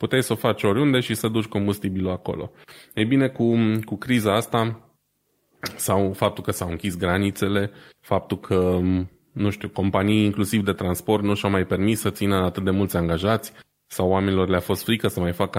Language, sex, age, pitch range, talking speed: Romanian, male, 20-39, 90-110 Hz, 185 wpm